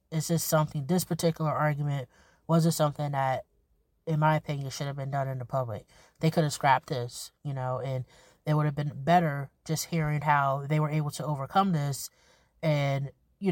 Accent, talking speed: American, 195 wpm